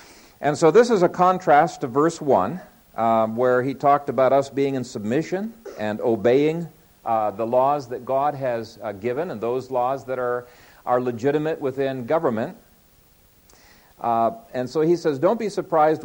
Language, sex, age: English, male, 50-69